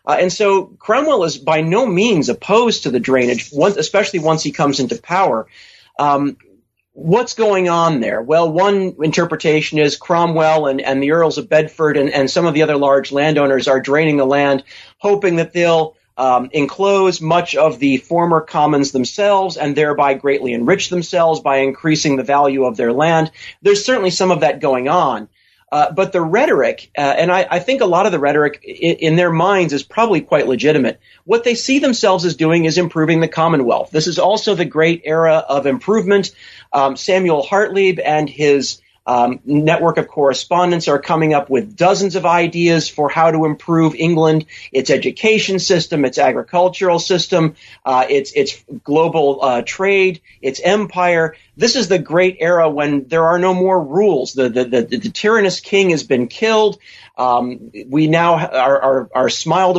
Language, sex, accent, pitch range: English, male, American, 145-180 Hz